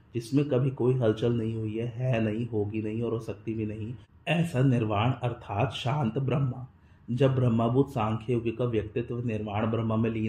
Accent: native